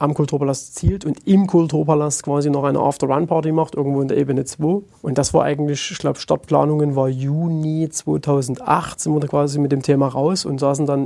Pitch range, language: 140-155 Hz, German